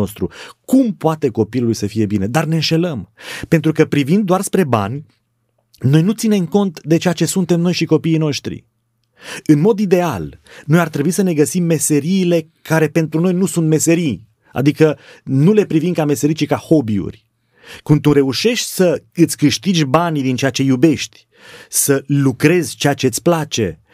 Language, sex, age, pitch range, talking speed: Romanian, male, 30-49, 135-175 Hz, 175 wpm